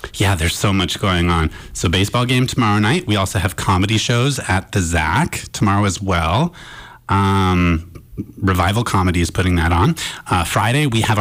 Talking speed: 175 wpm